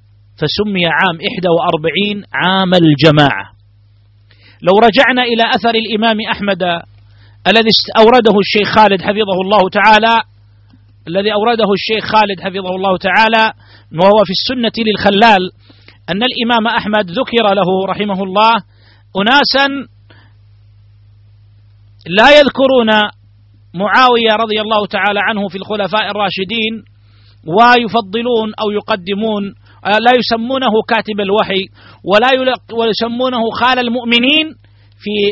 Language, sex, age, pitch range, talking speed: Arabic, male, 40-59, 150-230 Hz, 100 wpm